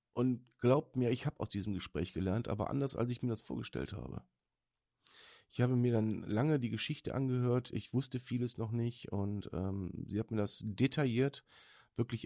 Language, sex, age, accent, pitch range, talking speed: German, male, 40-59, German, 105-135 Hz, 185 wpm